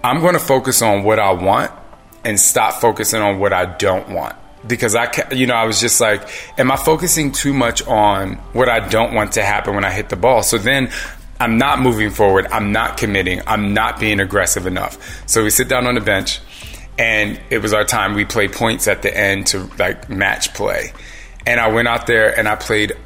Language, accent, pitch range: English, American, 100-120 Hz